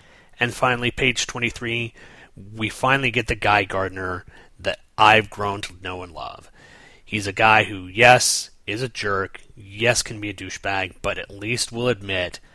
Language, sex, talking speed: English, male, 165 wpm